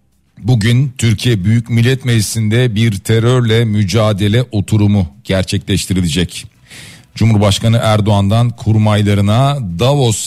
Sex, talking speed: male, 80 wpm